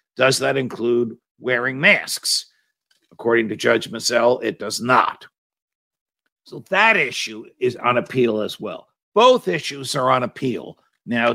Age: 50-69